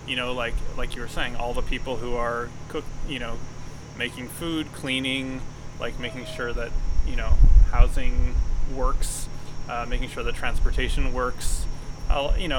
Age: 20-39